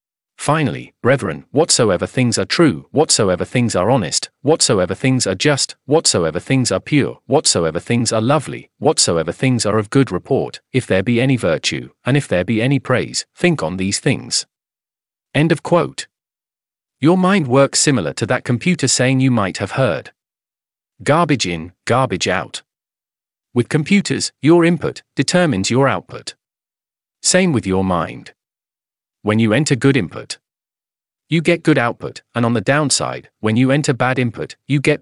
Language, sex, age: English, male, 40-59